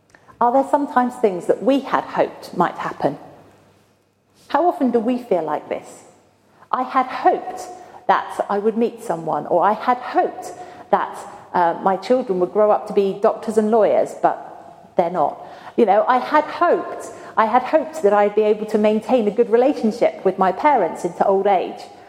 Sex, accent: female, British